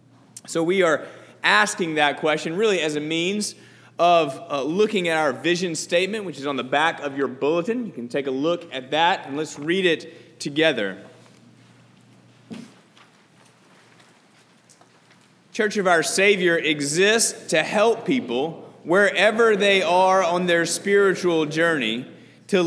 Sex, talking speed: male, 140 wpm